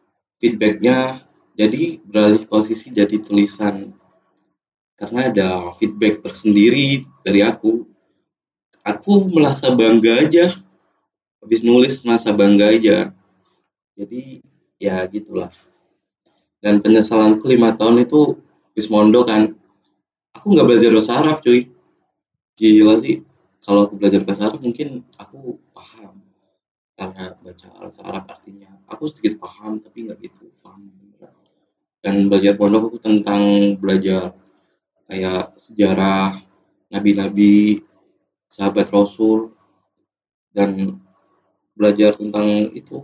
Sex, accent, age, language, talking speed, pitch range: male, native, 20-39, Indonesian, 95 wpm, 100-115 Hz